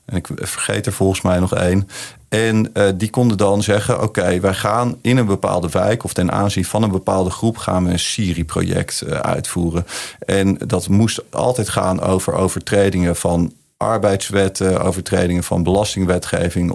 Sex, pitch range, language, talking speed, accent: male, 90-115 Hz, Dutch, 160 wpm, Dutch